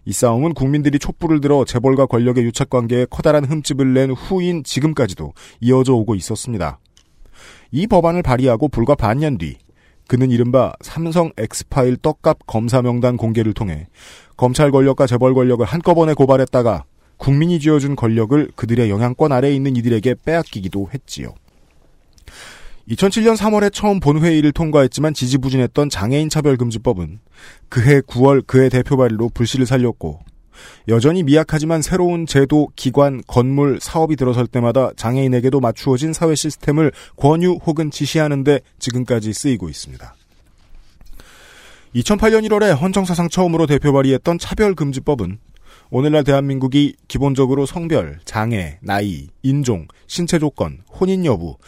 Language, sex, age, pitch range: Korean, male, 40-59, 115-155 Hz